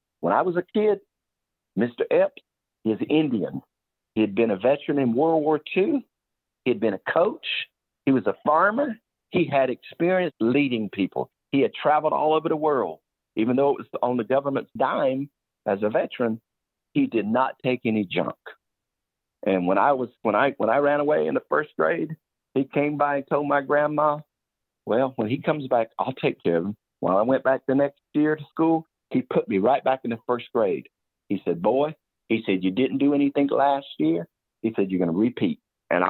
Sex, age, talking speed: male, 50-69, 205 wpm